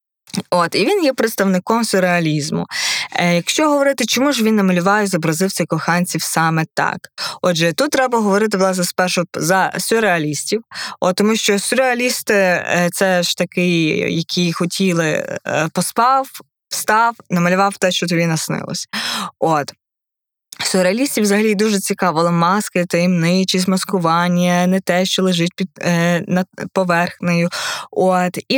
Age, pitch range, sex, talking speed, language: 20-39, 165-205 Hz, female, 130 wpm, Ukrainian